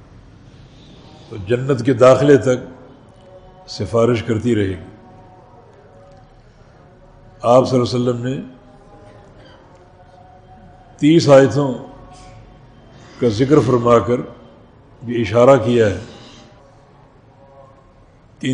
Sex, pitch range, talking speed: male, 120-135 Hz, 80 wpm